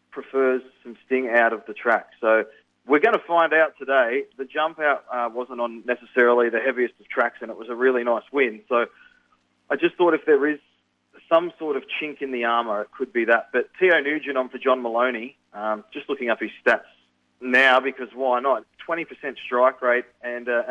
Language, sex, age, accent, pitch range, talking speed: English, male, 30-49, Australian, 120-150 Hz, 210 wpm